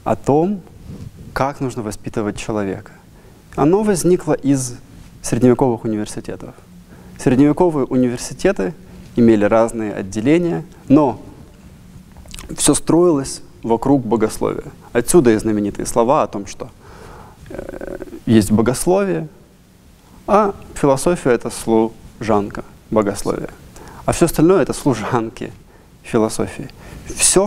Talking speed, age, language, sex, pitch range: 90 wpm, 20-39, Russian, male, 110-140 Hz